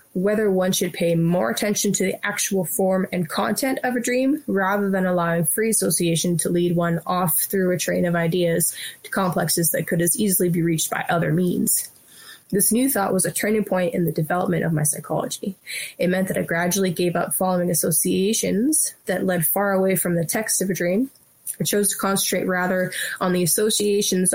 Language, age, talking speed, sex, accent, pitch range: English, 20-39, 195 wpm, female, American, 175-205 Hz